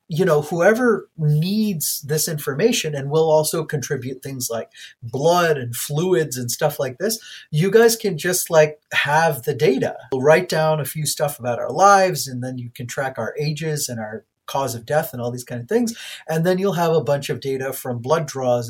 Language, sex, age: English, male, 30-49